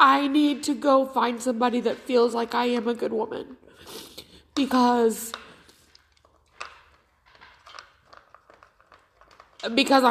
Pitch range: 235-280 Hz